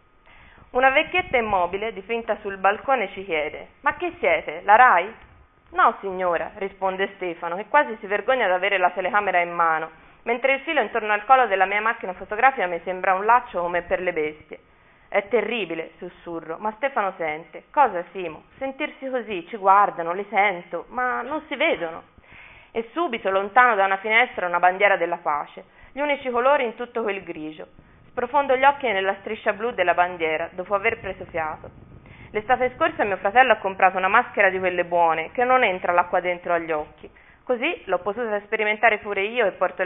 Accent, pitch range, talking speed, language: native, 175-245 Hz, 180 wpm, Italian